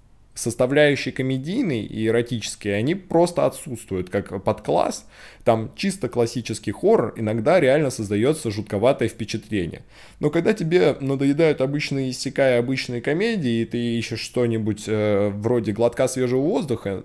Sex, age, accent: male, 20-39, native